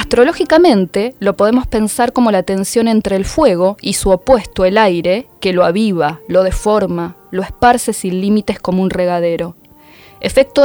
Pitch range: 185-265 Hz